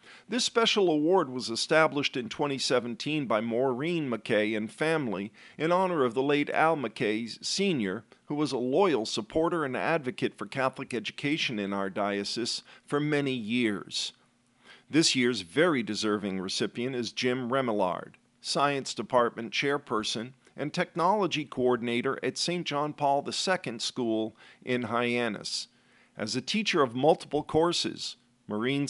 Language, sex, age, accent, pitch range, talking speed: English, male, 50-69, American, 120-150 Hz, 135 wpm